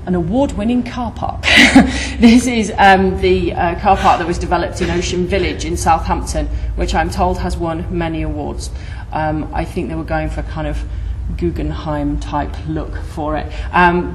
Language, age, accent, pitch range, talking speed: English, 30-49, British, 155-185 Hz, 180 wpm